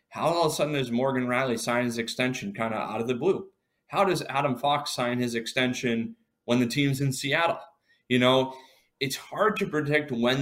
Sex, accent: male, American